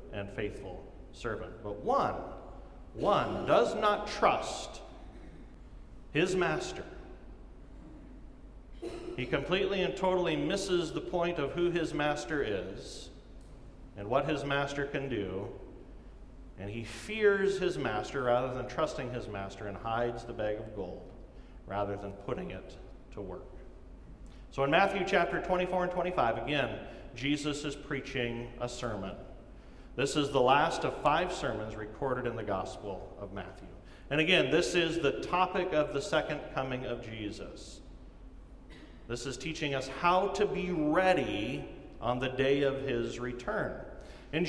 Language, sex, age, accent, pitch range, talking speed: English, male, 40-59, American, 125-185 Hz, 140 wpm